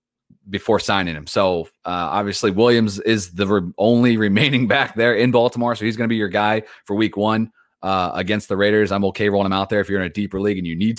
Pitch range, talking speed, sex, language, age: 90-105 Hz, 240 wpm, male, English, 30-49